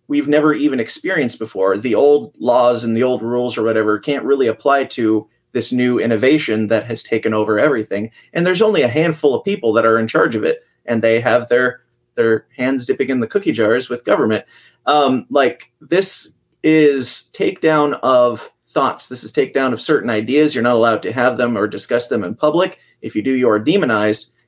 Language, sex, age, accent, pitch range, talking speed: English, male, 30-49, American, 120-155 Hz, 200 wpm